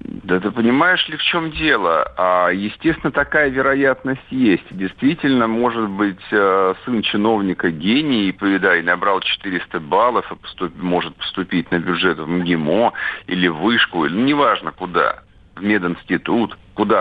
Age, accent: 50-69, native